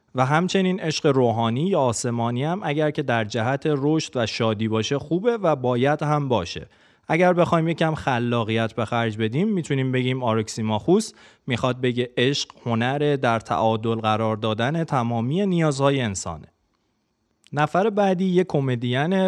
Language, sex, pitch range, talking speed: Persian, male, 120-160 Hz, 140 wpm